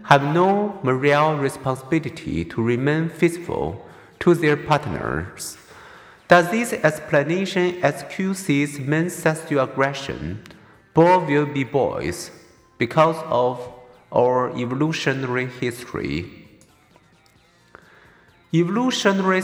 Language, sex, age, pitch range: Chinese, male, 50-69, 135-175 Hz